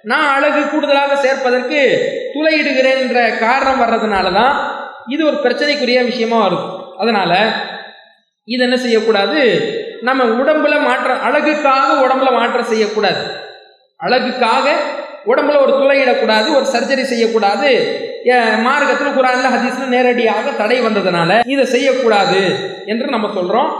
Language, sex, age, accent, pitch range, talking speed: English, male, 20-39, Indian, 235-280 Hz, 120 wpm